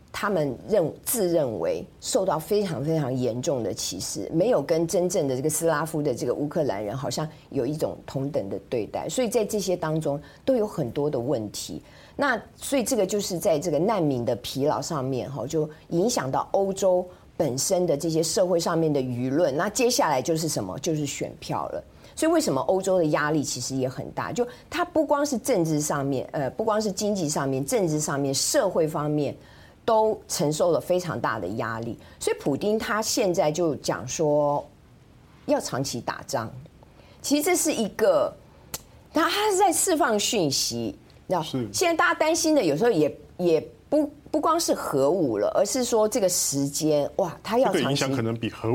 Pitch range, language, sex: 140-210 Hz, Chinese, female